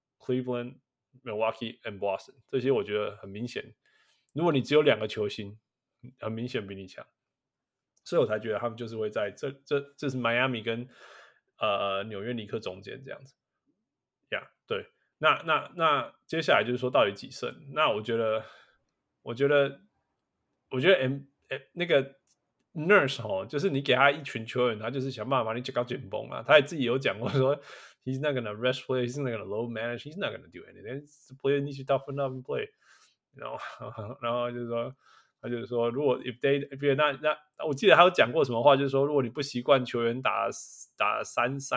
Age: 20-39